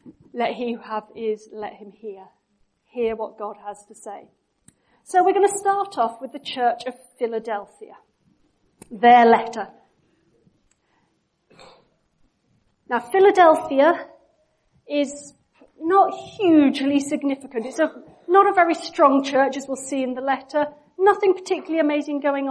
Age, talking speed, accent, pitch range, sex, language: 40-59, 135 wpm, British, 235-320 Hz, female, English